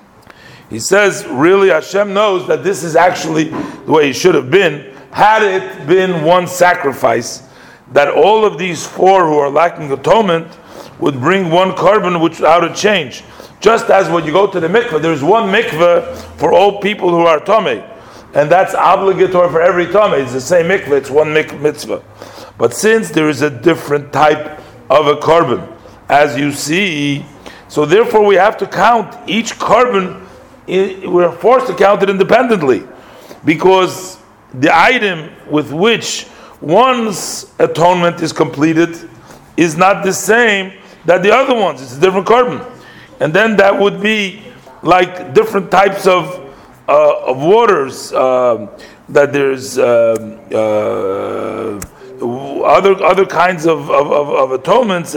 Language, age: English, 50-69